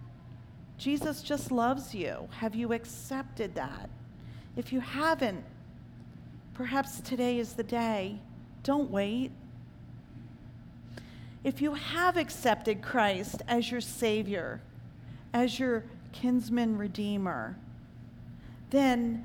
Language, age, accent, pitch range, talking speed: English, 50-69, American, 245-325 Hz, 95 wpm